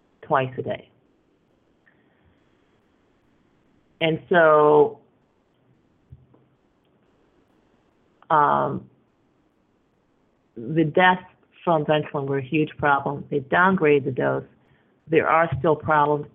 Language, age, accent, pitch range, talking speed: English, 50-69, American, 135-170 Hz, 80 wpm